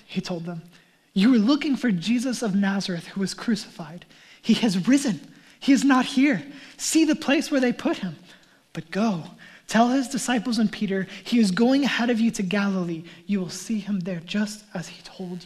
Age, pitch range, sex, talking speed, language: 20-39, 190-240 Hz, male, 200 wpm, English